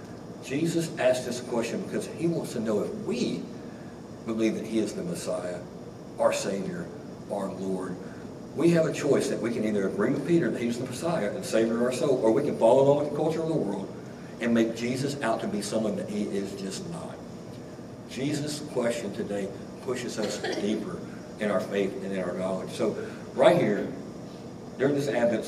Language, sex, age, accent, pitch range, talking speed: English, male, 60-79, American, 100-145 Hz, 195 wpm